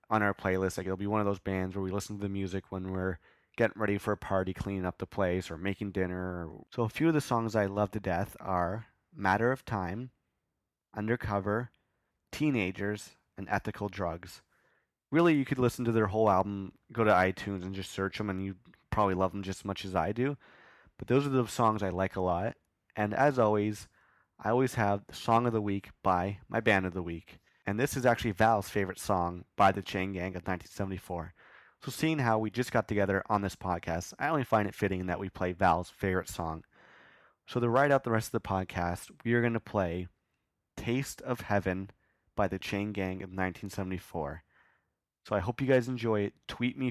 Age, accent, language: 30-49, American, English